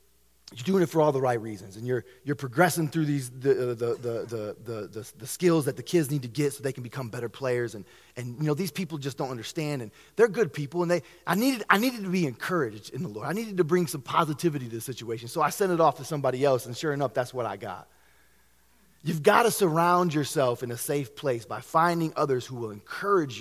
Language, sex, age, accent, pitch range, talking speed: English, male, 20-39, American, 125-175 Hz, 255 wpm